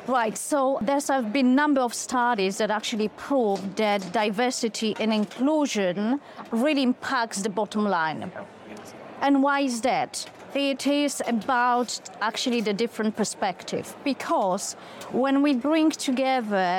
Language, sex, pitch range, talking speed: English, female, 215-270 Hz, 130 wpm